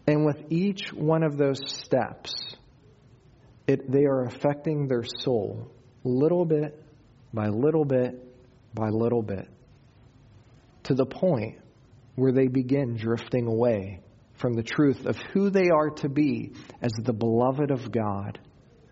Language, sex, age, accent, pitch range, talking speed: English, male, 40-59, American, 125-175 Hz, 135 wpm